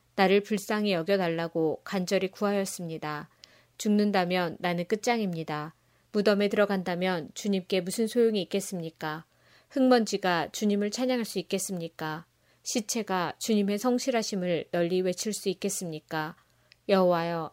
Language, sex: Korean, female